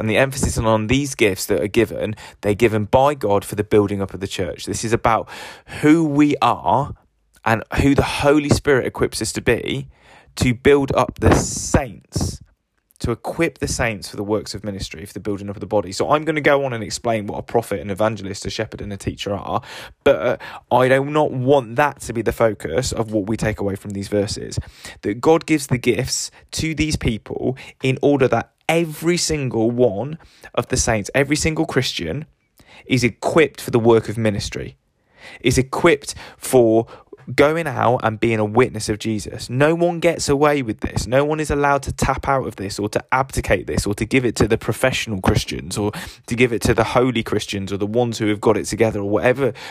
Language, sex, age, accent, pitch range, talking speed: English, male, 20-39, British, 105-135 Hz, 210 wpm